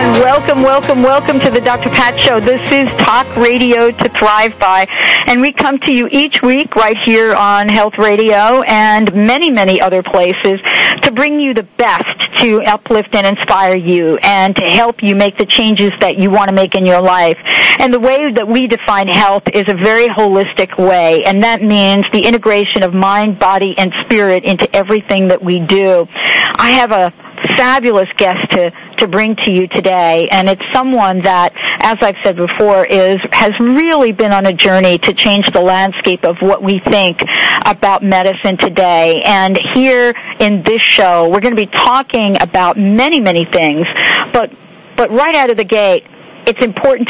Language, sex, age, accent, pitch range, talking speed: English, female, 50-69, American, 190-240 Hz, 190 wpm